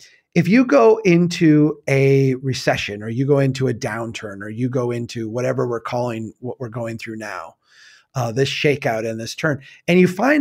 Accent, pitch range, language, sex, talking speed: American, 125-155 Hz, English, male, 190 wpm